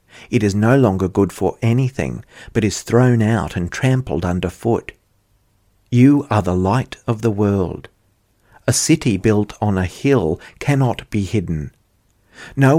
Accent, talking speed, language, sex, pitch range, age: Australian, 150 wpm, English, male, 95-115 Hz, 50-69